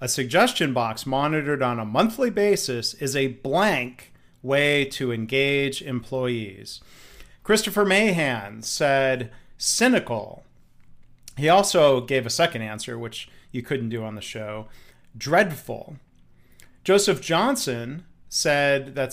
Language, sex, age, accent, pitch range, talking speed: English, male, 40-59, American, 125-170 Hz, 115 wpm